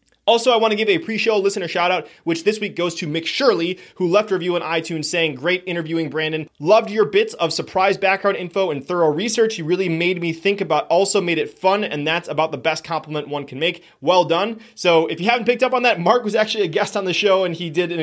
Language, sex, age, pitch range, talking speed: English, male, 30-49, 165-205 Hz, 255 wpm